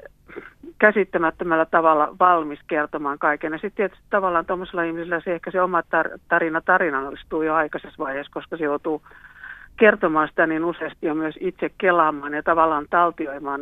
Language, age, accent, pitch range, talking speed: Finnish, 50-69, native, 145-180 Hz, 150 wpm